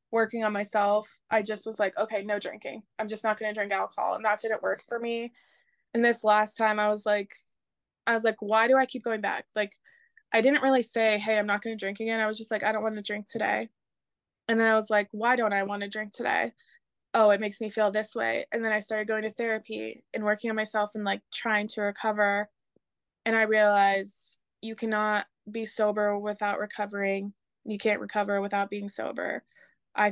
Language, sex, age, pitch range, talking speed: English, female, 20-39, 205-225 Hz, 220 wpm